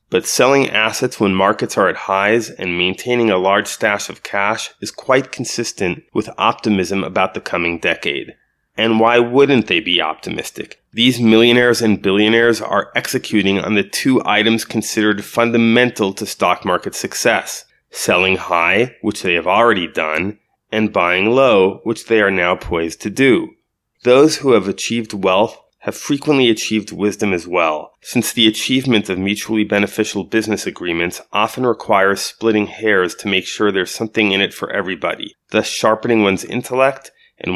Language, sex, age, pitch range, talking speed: English, male, 30-49, 100-115 Hz, 160 wpm